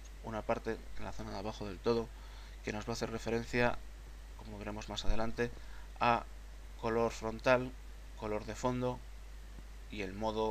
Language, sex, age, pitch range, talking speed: Spanish, male, 20-39, 95-120 Hz, 160 wpm